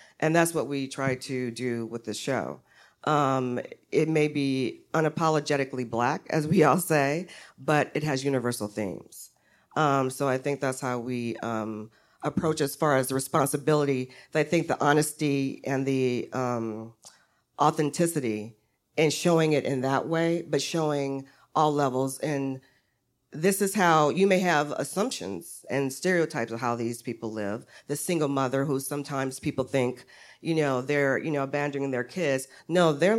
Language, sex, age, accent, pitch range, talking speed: English, female, 40-59, American, 130-155 Hz, 160 wpm